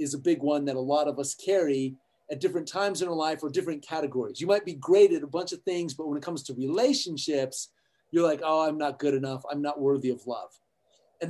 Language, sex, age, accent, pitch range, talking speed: English, male, 40-59, American, 165-280 Hz, 250 wpm